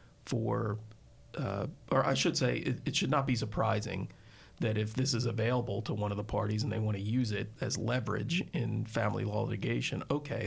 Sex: male